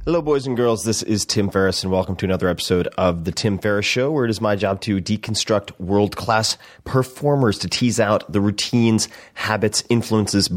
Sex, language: male, English